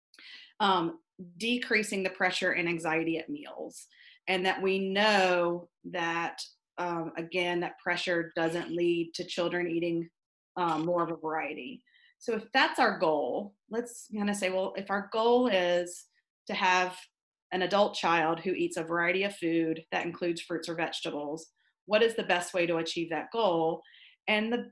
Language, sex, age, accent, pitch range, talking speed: English, female, 30-49, American, 170-210 Hz, 165 wpm